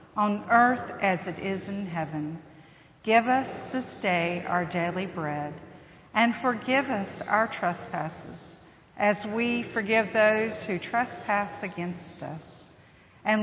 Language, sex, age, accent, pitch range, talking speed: English, female, 50-69, American, 175-230 Hz, 125 wpm